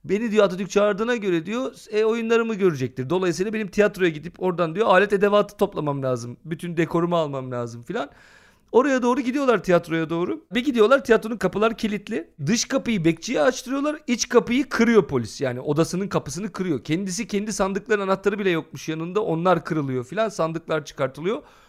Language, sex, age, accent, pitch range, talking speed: Turkish, male, 40-59, native, 160-215 Hz, 160 wpm